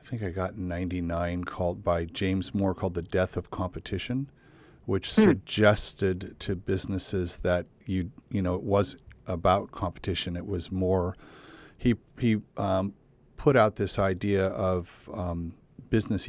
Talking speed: 145 wpm